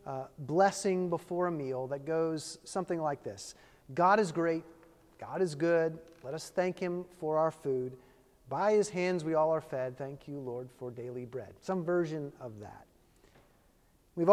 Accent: American